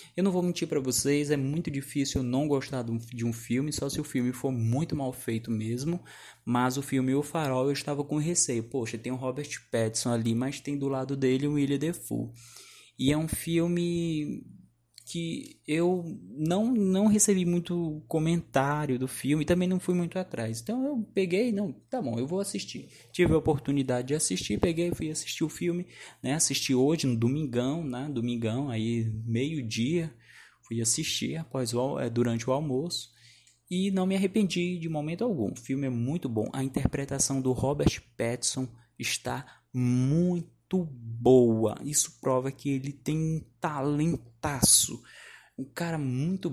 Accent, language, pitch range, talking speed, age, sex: Brazilian, Portuguese, 125-160 Hz, 165 wpm, 20-39, male